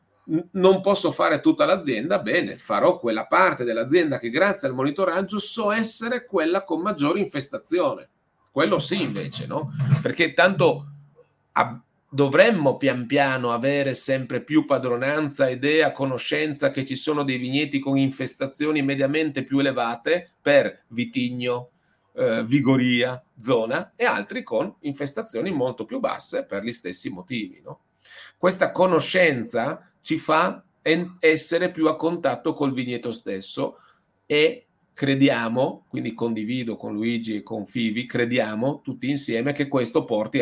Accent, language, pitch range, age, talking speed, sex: native, Italian, 125-160 Hz, 40-59, 130 wpm, male